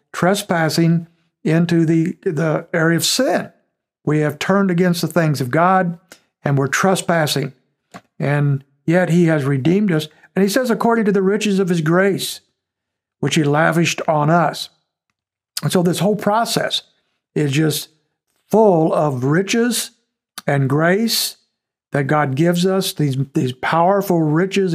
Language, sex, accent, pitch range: English, male, American, 145-185 Hz